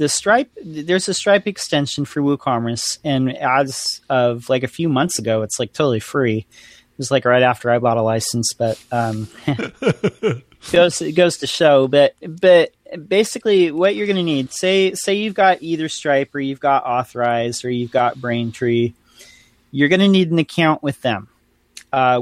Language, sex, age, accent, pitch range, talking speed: English, male, 30-49, American, 120-165 Hz, 185 wpm